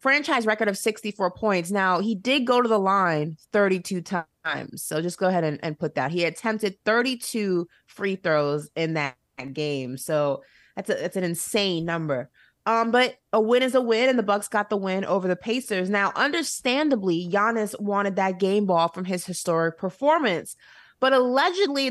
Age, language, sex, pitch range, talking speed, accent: 20-39, English, female, 185-245 Hz, 180 wpm, American